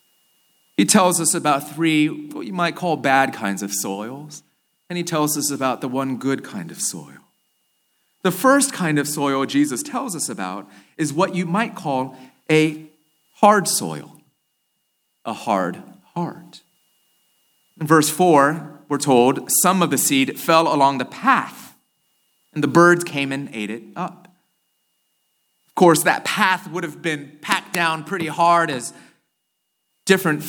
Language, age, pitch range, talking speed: English, 30-49, 145-185 Hz, 155 wpm